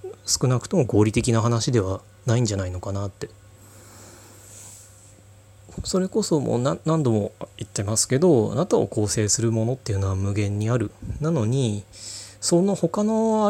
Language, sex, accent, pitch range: Japanese, male, native, 100-130 Hz